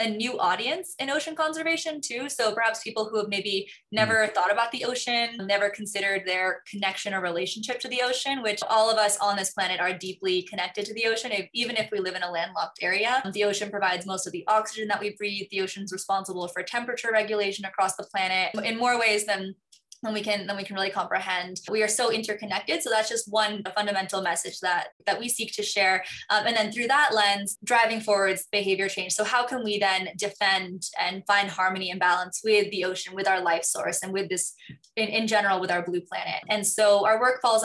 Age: 20-39